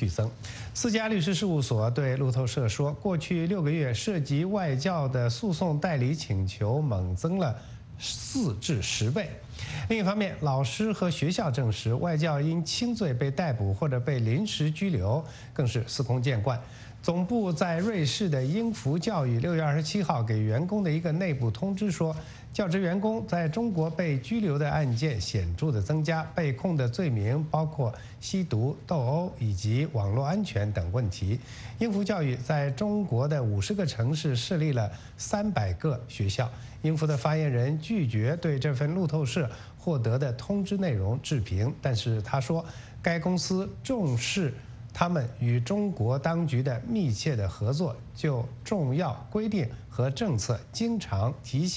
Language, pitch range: English, 120-170 Hz